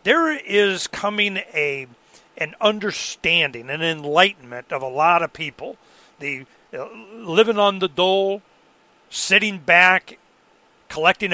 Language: English